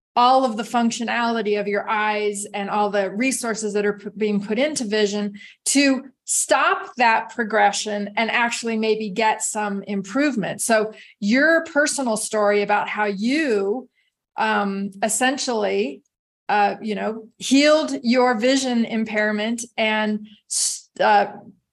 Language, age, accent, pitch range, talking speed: English, 30-49, American, 210-250 Hz, 125 wpm